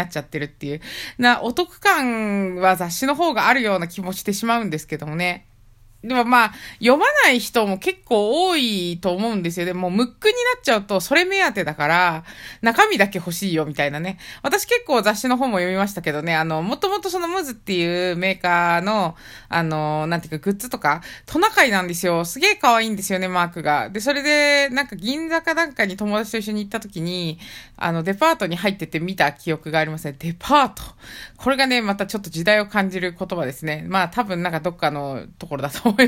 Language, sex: Japanese, female